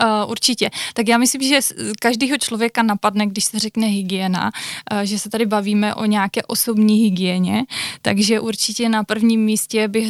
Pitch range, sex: 200-225 Hz, female